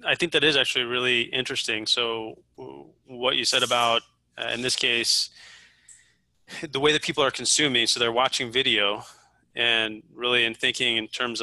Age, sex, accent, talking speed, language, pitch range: 20-39, male, American, 170 wpm, English, 110-125 Hz